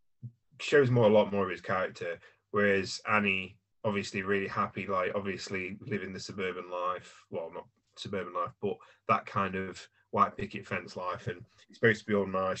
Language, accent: English, British